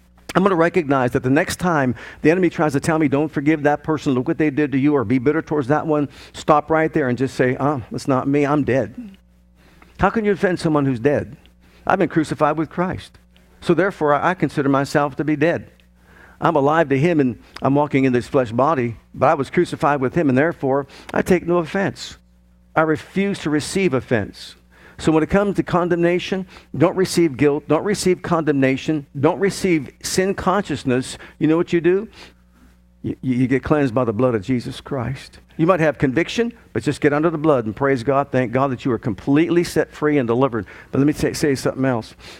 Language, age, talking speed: English, 50-69, 210 wpm